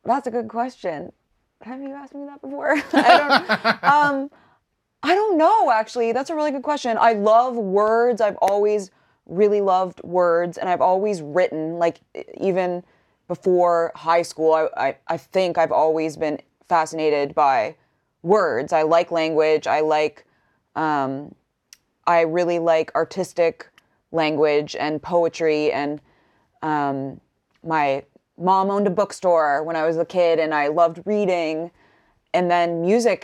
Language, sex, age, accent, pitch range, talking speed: English, female, 20-39, American, 160-210 Hz, 145 wpm